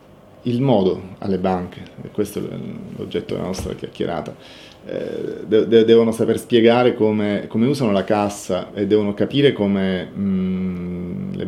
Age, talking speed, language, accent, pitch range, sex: 30-49, 125 wpm, Italian, native, 95-115 Hz, male